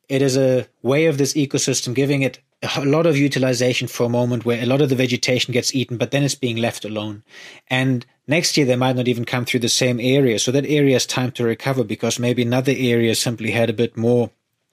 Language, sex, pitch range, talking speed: English, male, 120-140 Hz, 235 wpm